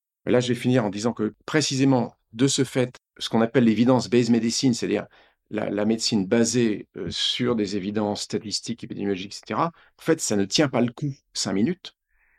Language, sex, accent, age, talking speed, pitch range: French, male, French, 50-69, 190 wpm, 110-135 Hz